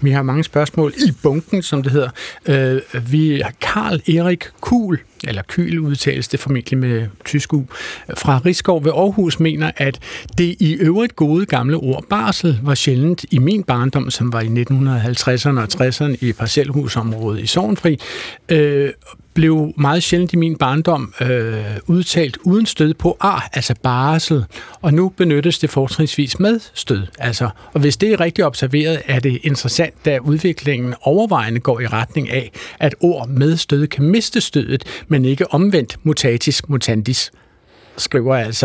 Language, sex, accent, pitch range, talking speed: Danish, male, native, 130-165 Hz, 160 wpm